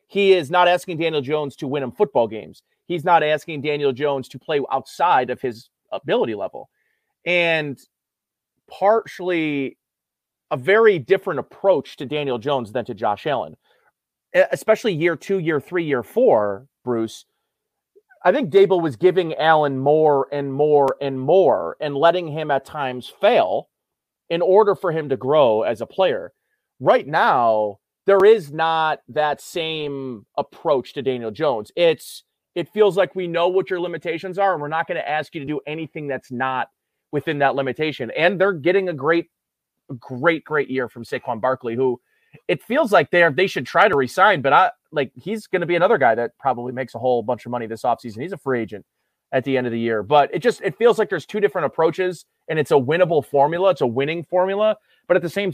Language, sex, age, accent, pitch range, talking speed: English, male, 30-49, American, 135-185 Hz, 195 wpm